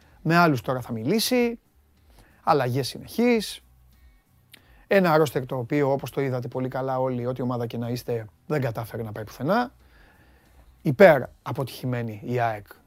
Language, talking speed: Greek, 145 wpm